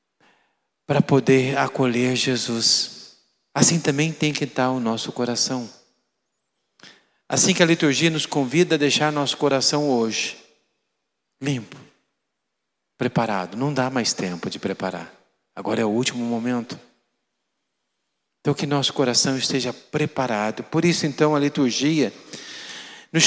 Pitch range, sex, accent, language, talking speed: 120-160 Hz, male, Brazilian, Portuguese, 125 wpm